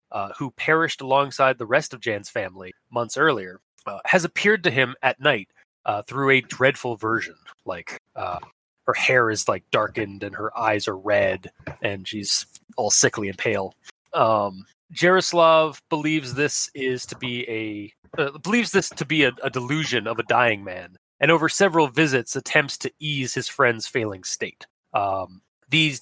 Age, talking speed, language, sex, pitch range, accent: 30-49, 170 wpm, English, male, 120-160 Hz, American